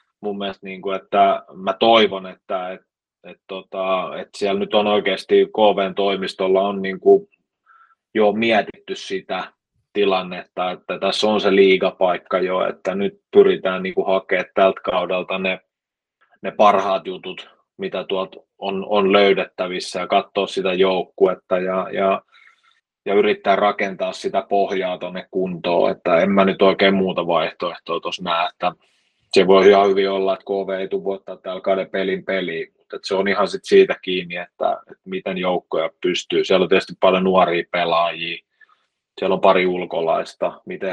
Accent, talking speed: native, 150 wpm